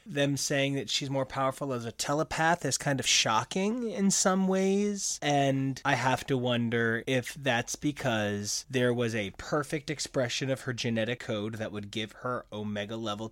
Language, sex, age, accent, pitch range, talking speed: English, male, 20-39, American, 115-155 Hz, 170 wpm